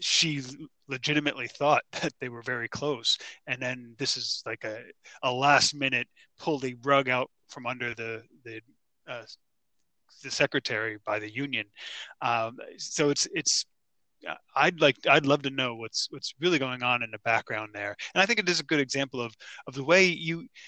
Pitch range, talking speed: 120-145 Hz, 185 wpm